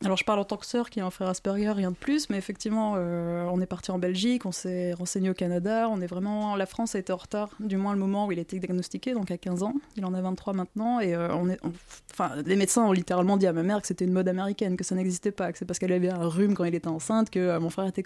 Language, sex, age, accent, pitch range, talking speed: French, female, 20-39, French, 185-215 Hz, 310 wpm